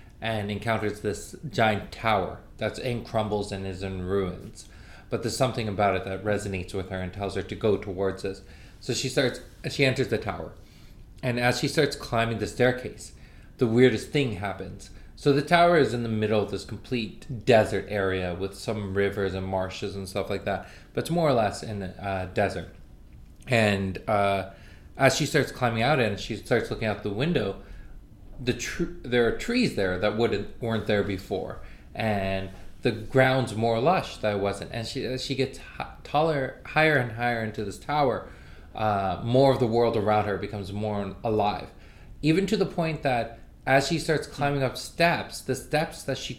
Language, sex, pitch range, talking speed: English, male, 100-130 Hz, 190 wpm